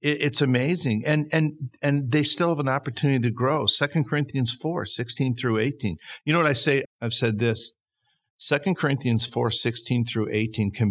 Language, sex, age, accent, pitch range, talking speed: English, male, 50-69, American, 110-140 Hz, 180 wpm